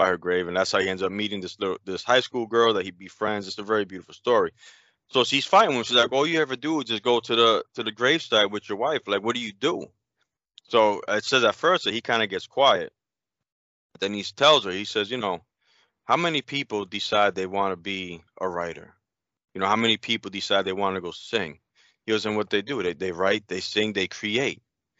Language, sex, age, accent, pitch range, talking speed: English, male, 20-39, American, 105-150 Hz, 250 wpm